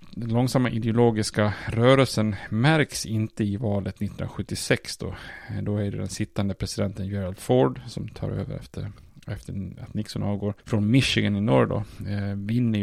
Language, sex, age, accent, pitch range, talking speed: Swedish, male, 30-49, Norwegian, 100-115 Hz, 155 wpm